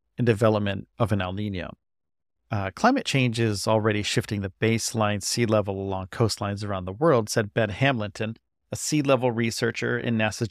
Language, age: English, 40-59